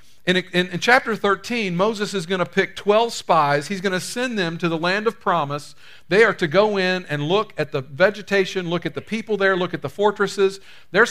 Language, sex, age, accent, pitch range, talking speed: English, male, 50-69, American, 155-215 Hz, 225 wpm